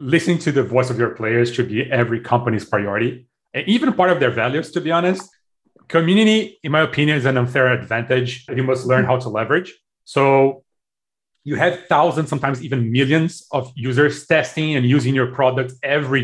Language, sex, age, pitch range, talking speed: English, male, 30-49, 130-170 Hz, 190 wpm